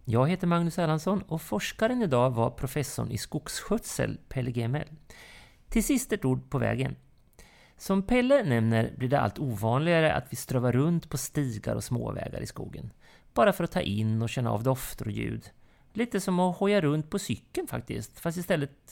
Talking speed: 180 wpm